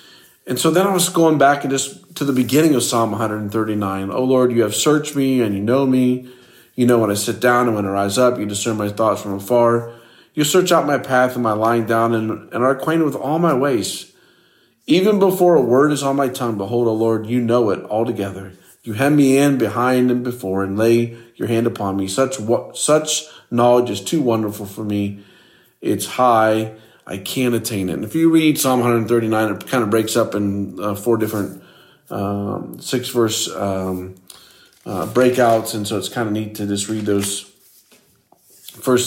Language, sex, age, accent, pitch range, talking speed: English, male, 40-59, American, 110-135 Hz, 205 wpm